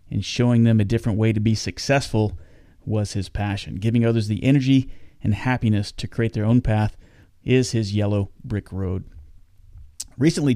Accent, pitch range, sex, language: American, 100-120 Hz, male, English